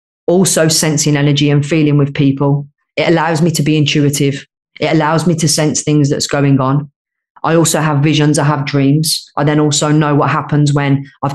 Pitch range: 135-155 Hz